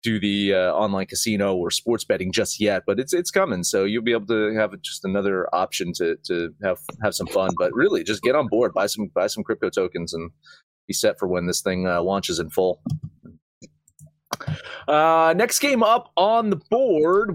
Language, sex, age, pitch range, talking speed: English, male, 30-49, 100-145 Hz, 205 wpm